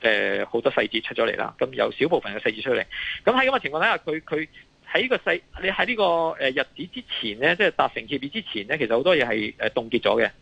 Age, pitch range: 20-39, 115-165 Hz